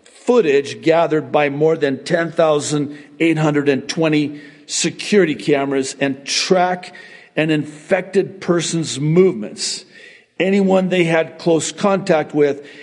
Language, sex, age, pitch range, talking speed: English, male, 50-69, 140-175 Hz, 95 wpm